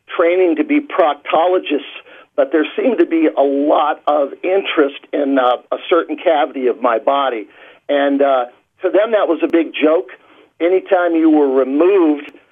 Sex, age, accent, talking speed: male, 50-69, American, 165 wpm